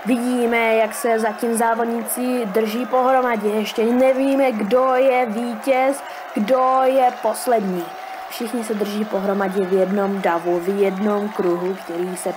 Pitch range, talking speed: 205-250 Hz, 130 wpm